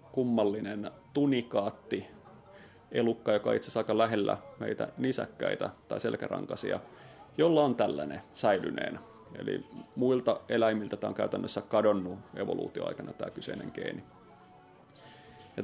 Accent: native